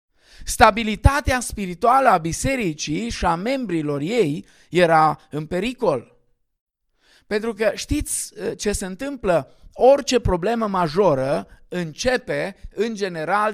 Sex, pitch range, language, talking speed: male, 155-215 Hz, Romanian, 100 wpm